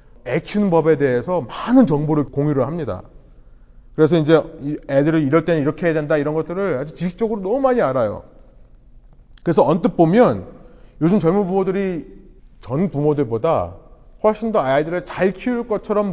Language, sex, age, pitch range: Korean, male, 30-49, 125-175 Hz